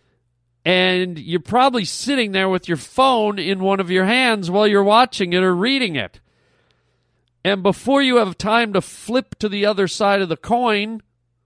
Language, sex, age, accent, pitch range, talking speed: English, male, 40-59, American, 160-210 Hz, 180 wpm